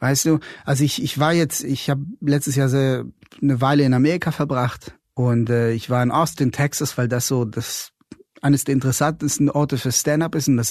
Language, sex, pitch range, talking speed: German, male, 125-150 Hz, 205 wpm